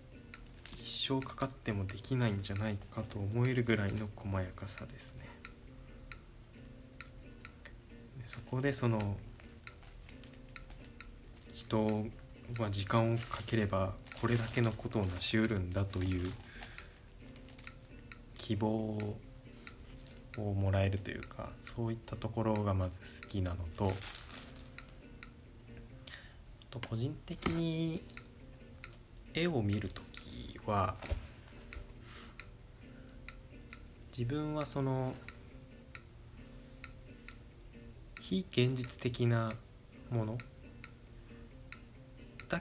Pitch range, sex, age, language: 105-120 Hz, male, 20-39, Japanese